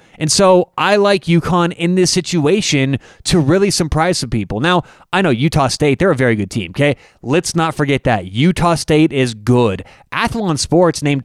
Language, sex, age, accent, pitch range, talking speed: English, male, 30-49, American, 130-180 Hz, 185 wpm